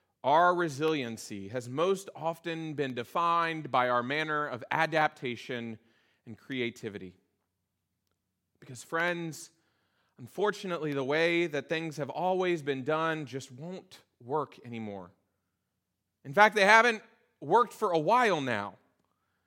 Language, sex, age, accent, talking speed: English, male, 30-49, American, 115 wpm